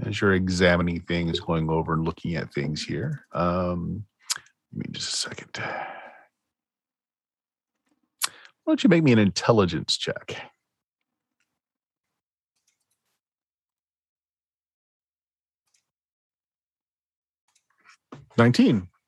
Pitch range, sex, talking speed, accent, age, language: 95-140 Hz, male, 80 wpm, American, 40-59, English